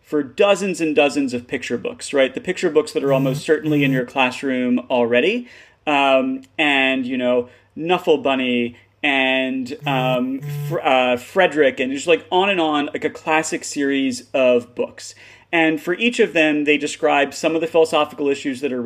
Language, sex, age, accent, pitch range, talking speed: English, male, 30-49, American, 135-180 Hz, 170 wpm